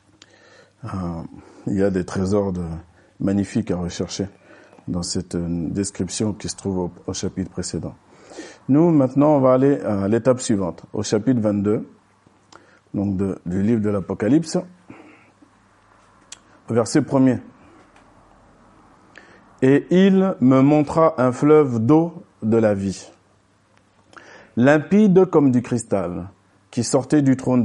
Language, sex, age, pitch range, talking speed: French, male, 50-69, 100-130 Hz, 120 wpm